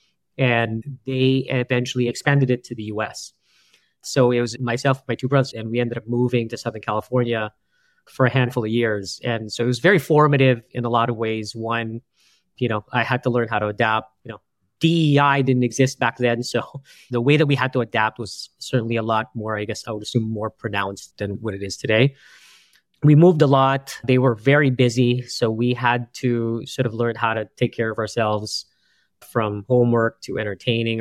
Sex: male